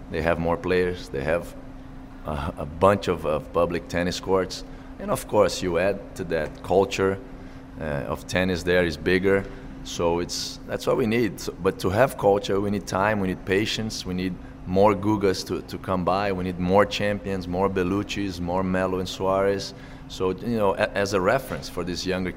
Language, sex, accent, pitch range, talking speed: English, male, Brazilian, 85-100 Hz, 195 wpm